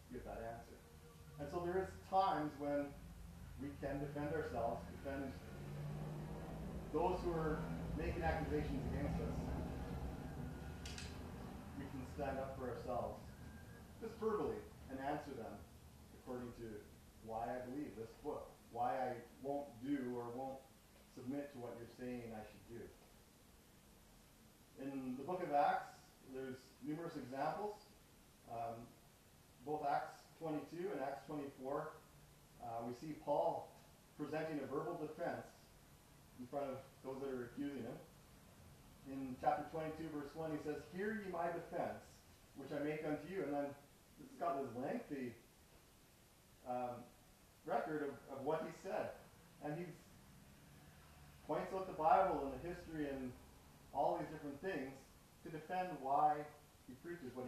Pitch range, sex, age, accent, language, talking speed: 115-155 Hz, male, 40-59, American, English, 140 wpm